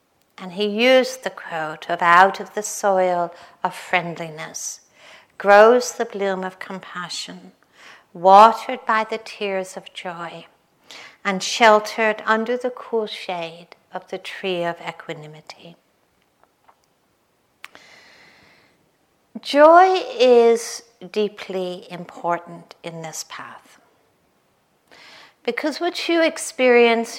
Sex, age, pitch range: female, 60-79, 180-230 Hz